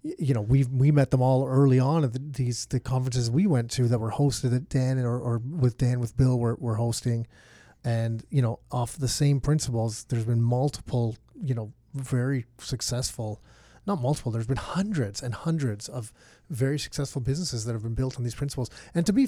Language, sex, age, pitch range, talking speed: English, male, 30-49, 120-150 Hz, 200 wpm